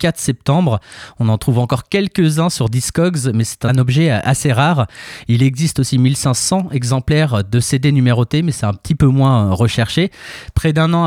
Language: French